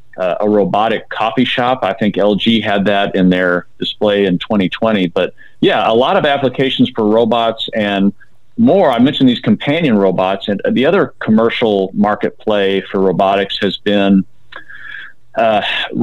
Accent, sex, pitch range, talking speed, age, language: American, male, 100-130 Hz, 155 wpm, 40-59, English